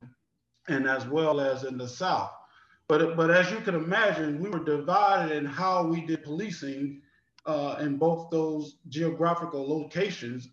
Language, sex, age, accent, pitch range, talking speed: English, male, 40-59, American, 150-185 Hz, 155 wpm